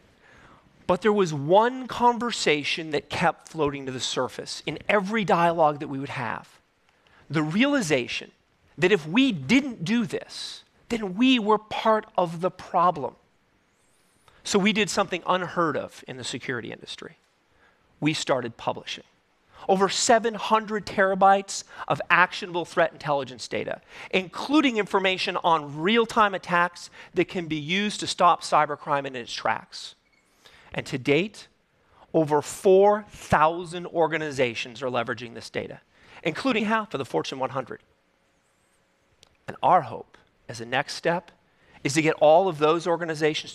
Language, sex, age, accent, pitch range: Korean, male, 40-59, American, 145-205 Hz